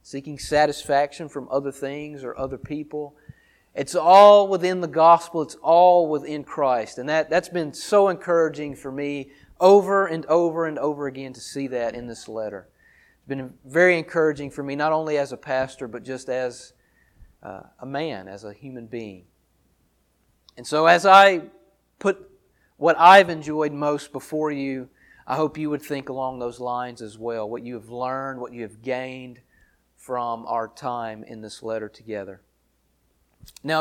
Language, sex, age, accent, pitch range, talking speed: English, male, 30-49, American, 125-165 Hz, 165 wpm